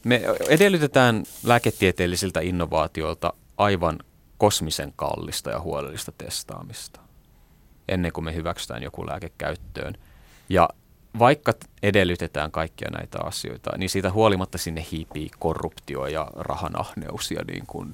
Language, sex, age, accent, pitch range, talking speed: Finnish, male, 30-49, native, 85-110 Hz, 110 wpm